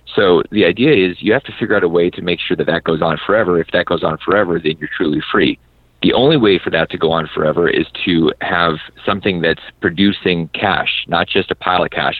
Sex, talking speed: male, 245 wpm